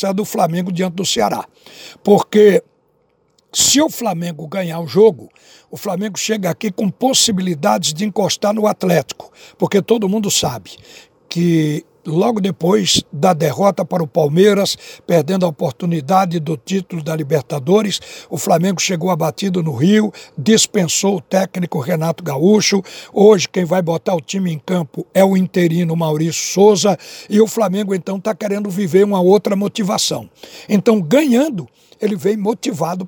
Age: 60-79